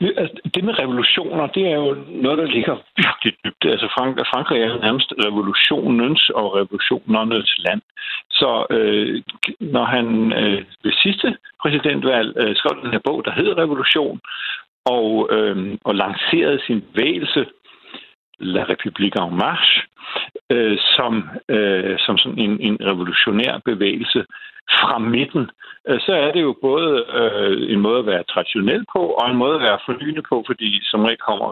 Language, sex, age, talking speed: Danish, male, 60-79, 155 wpm